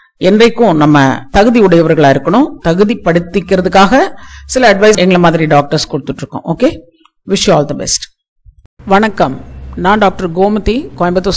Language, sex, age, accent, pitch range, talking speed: Tamil, female, 50-69, native, 165-210 Hz, 85 wpm